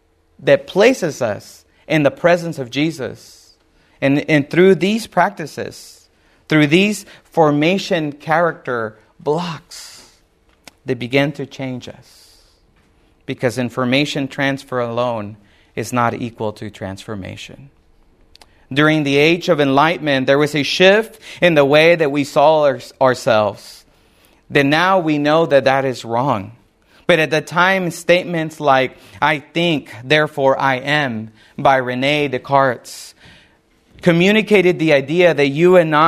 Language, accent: English, American